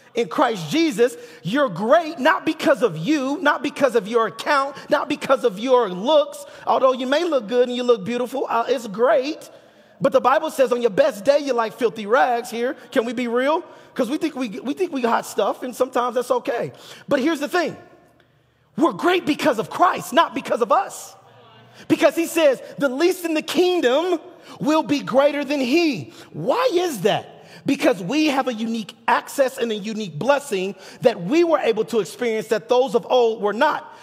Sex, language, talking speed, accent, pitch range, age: male, English, 190 wpm, American, 225-295 Hz, 30-49